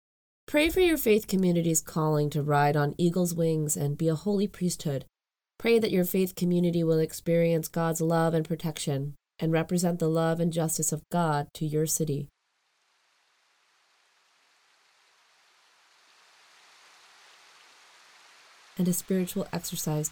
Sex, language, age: female, English, 30-49